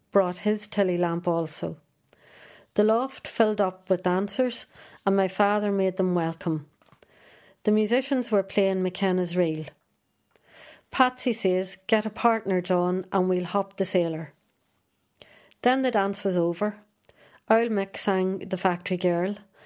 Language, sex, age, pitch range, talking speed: English, female, 30-49, 180-205 Hz, 135 wpm